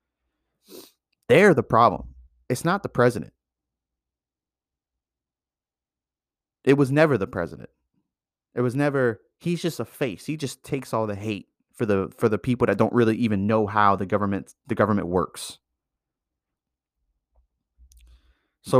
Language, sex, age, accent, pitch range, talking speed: English, male, 30-49, American, 65-105 Hz, 135 wpm